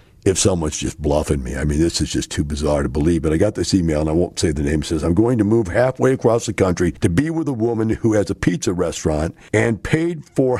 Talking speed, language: 270 wpm, English